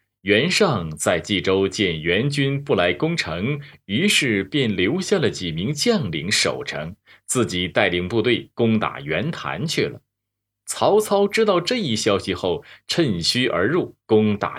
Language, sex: Chinese, male